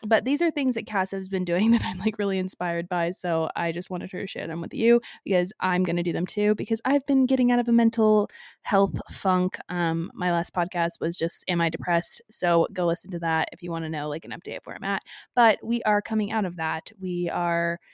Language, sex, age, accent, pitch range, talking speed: English, female, 20-39, American, 175-220 Hz, 255 wpm